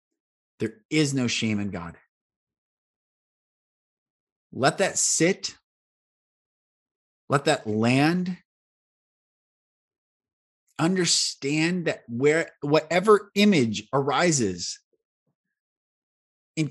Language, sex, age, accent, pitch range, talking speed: English, male, 30-49, American, 100-155 Hz, 70 wpm